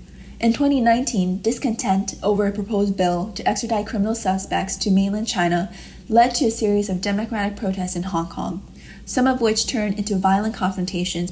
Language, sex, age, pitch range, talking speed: English, female, 20-39, 185-220 Hz, 165 wpm